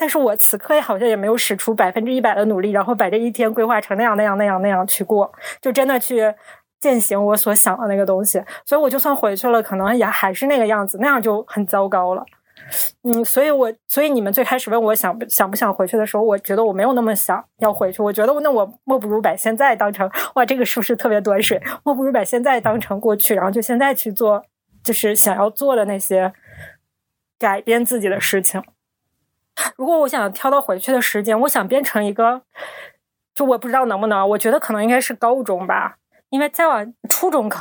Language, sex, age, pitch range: Chinese, female, 20-39, 205-255 Hz